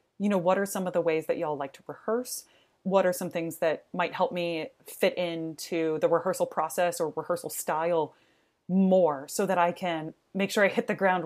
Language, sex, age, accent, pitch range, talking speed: English, female, 30-49, American, 165-200 Hz, 215 wpm